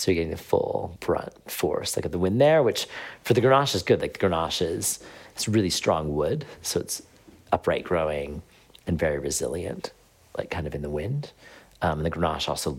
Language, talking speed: English, 205 wpm